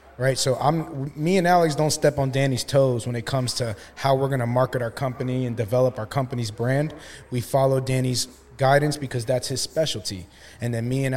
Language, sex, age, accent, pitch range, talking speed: English, male, 20-39, American, 125-145 Hz, 205 wpm